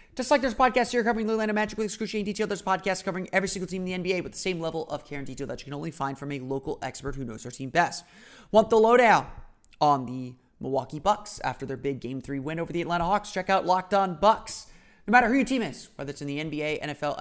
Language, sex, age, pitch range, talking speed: English, male, 30-49, 140-200 Hz, 275 wpm